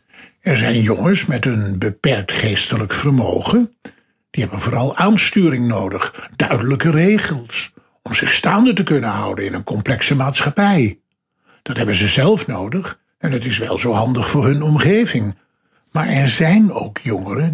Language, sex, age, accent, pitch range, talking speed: Dutch, male, 60-79, Dutch, 110-165 Hz, 150 wpm